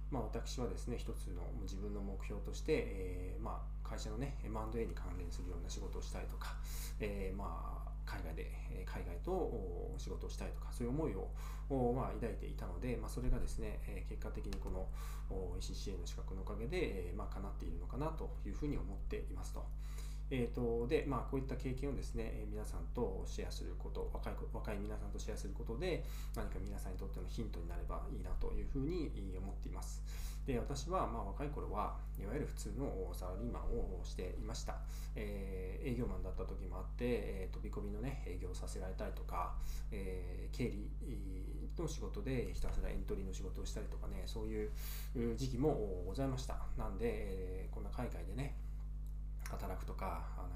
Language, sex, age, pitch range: Japanese, male, 20-39, 90-120 Hz